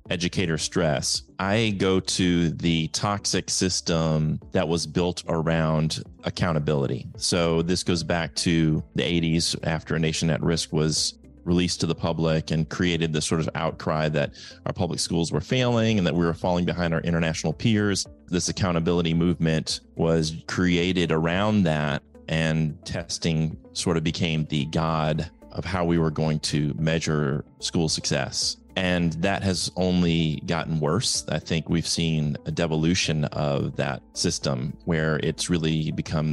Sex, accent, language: male, American, English